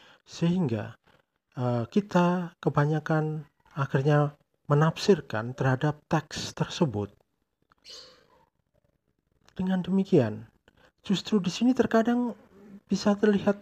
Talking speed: 75 wpm